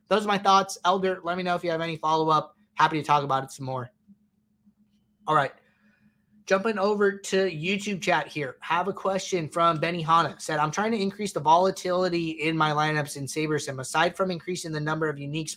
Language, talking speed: English, 205 wpm